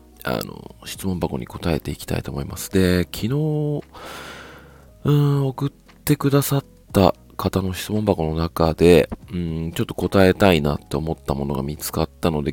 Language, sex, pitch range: Japanese, male, 80-115 Hz